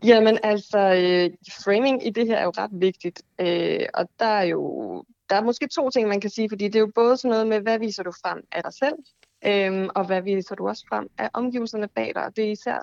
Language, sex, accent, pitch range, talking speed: Danish, female, native, 175-215 Hz, 240 wpm